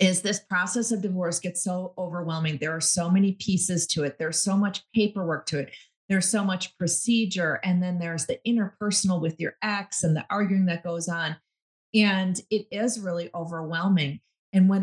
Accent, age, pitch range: American, 40-59, 170-215 Hz